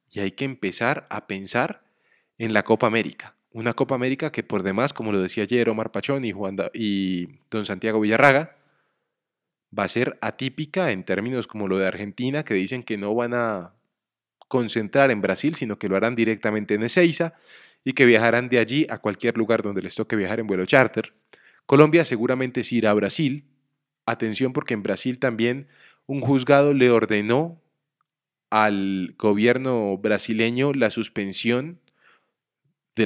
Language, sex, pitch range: Spanish, male, 105-135 Hz